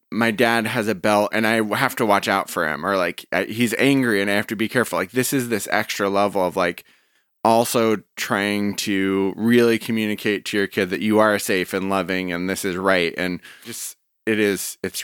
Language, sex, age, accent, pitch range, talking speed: English, male, 20-39, American, 105-135 Hz, 215 wpm